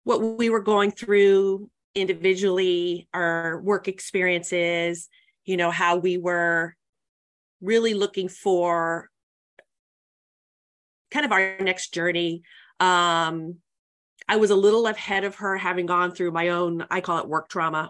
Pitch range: 165-195 Hz